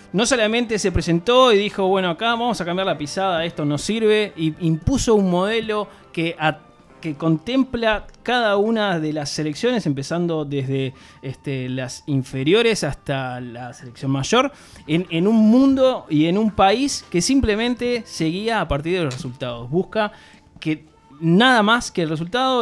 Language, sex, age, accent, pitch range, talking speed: Spanish, male, 20-39, Argentinian, 155-225 Hz, 155 wpm